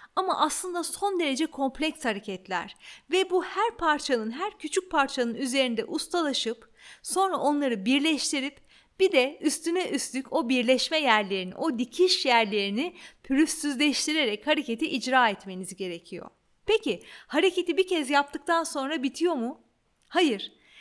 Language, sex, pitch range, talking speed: Turkish, female, 225-305 Hz, 120 wpm